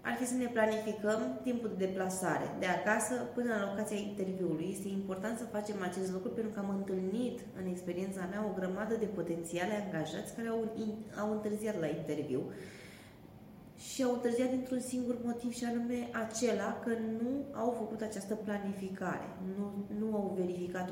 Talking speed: 165 wpm